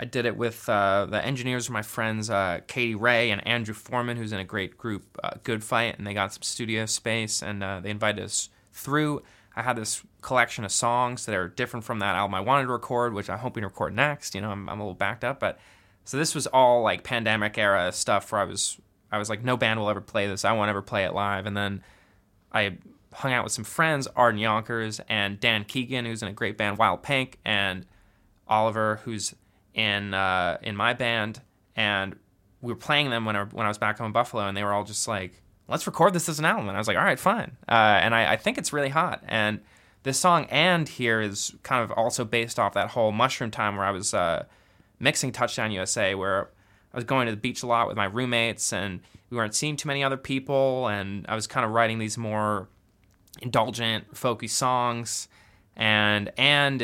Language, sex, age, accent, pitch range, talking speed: English, male, 20-39, American, 100-125 Hz, 230 wpm